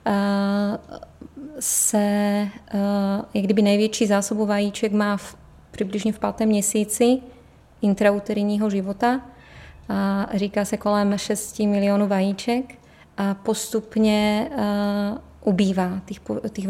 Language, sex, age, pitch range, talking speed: Czech, female, 20-39, 205-220 Hz, 90 wpm